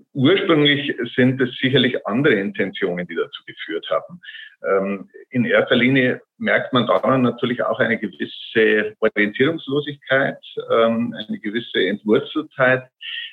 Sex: male